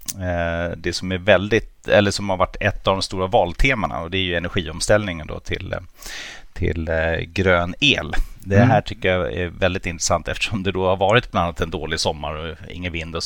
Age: 30-49